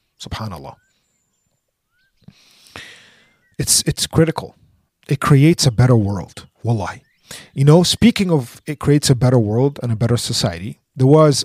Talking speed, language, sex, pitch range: 130 wpm, English, male, 125-160 Hz